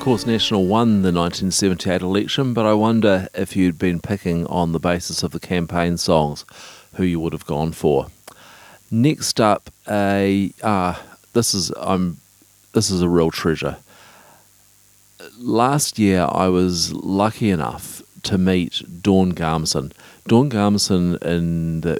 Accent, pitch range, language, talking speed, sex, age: Australian, 85-95 Hz, English, 155 wpm, male, 40-59